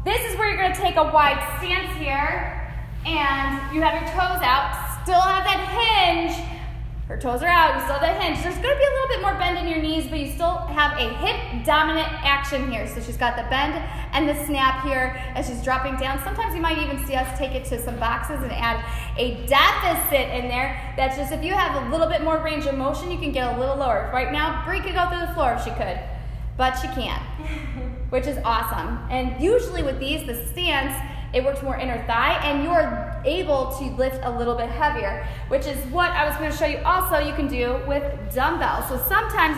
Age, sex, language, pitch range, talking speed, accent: 10-29, female, English, 265-335 Hz, 225 wpm, American